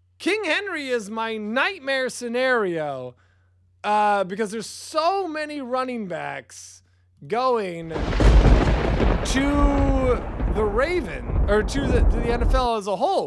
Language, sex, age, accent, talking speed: English, male, 20-39, American, 120 wpm